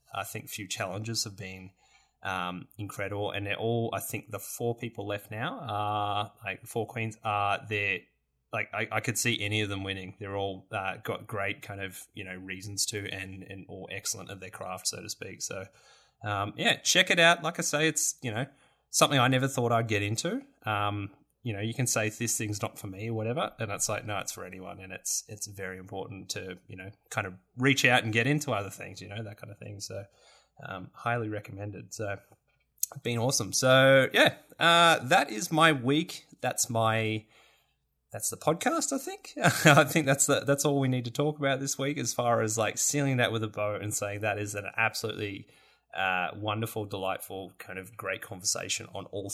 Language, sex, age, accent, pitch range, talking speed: English, male, 20-39, Australian, 100-130 Hz, 215 wpm